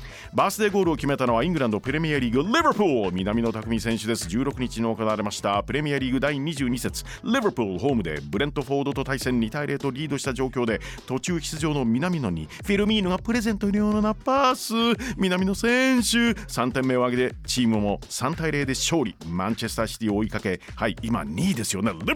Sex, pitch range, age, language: male, 115-165 Hz, 40-59, Japanese